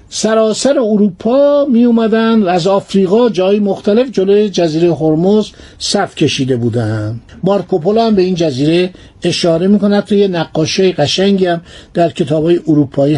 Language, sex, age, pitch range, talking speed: Persian, male, 50-69, 165-230 Hz, 130 wpm